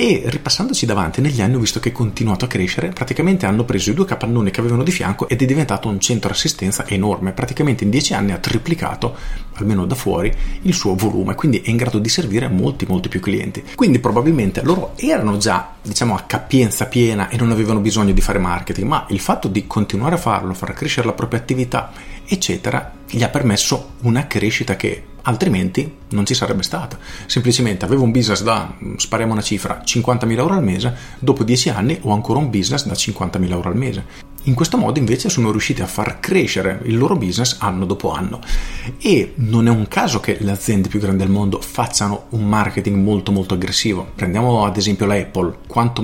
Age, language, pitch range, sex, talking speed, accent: 40-59, Italian, 100-125 Hz, male, 200 wpm, native